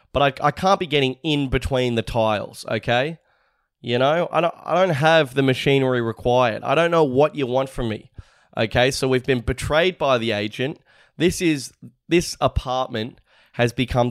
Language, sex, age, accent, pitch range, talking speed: English, male, 20-39, Australian, 115-140 Hz, 185 wpm